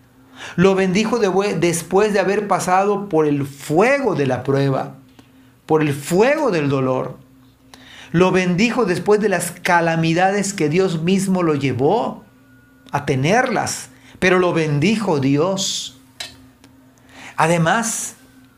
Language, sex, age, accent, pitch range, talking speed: Spanish, male, 50-69, Mexican, 145-205 Hz, 115 wpm